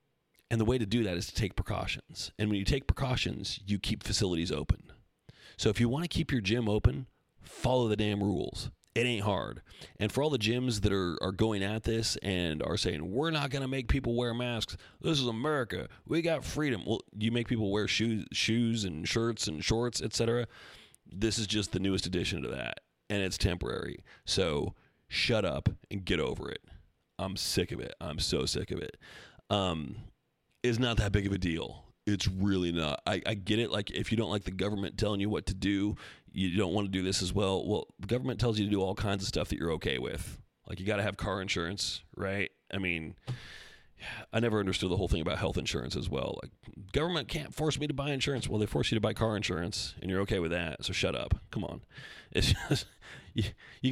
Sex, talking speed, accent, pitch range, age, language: male, 225 wpm, American, 95-120 Hz, 30-49, English